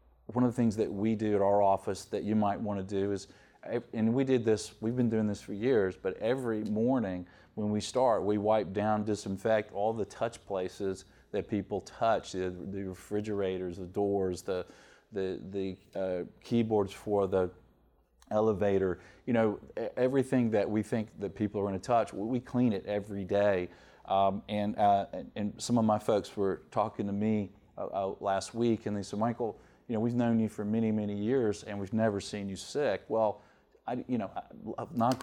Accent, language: American, English